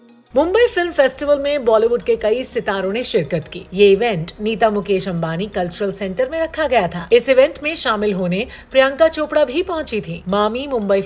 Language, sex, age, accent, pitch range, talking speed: Hindi, female, 50-69, native, 180-240 Hz, 185 wpm